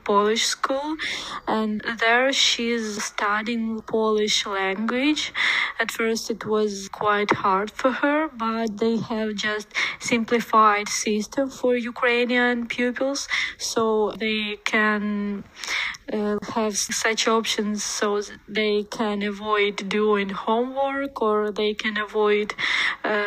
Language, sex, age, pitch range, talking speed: English, female, 20-39, 210-240 Hz, 115 wpm